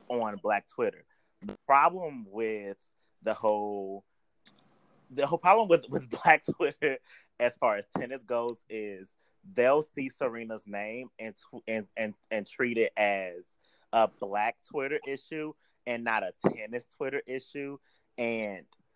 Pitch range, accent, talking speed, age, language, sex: 110-150 Hz, American, 135 wpm, 30-49, English, male